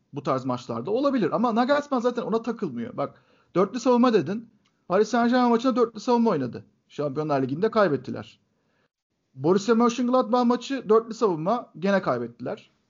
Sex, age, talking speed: male, 50-69, 135 wpm